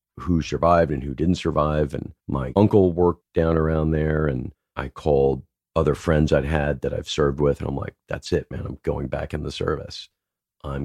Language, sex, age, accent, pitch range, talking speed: English, male, 40-59, American, 75-90 Hz, 205 wpm